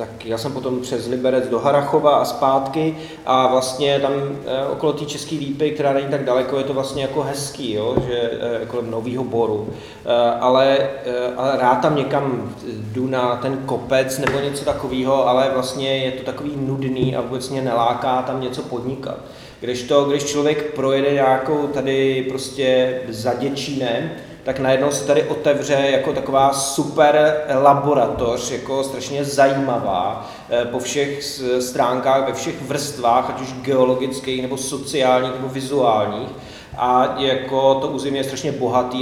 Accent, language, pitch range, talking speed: native, Czech, 125-140 Hz, 150 wpm